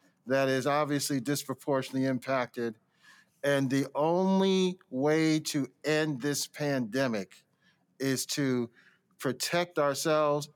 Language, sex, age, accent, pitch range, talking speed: English, male, 50-69, American, 130-155 Hz, 95 wpm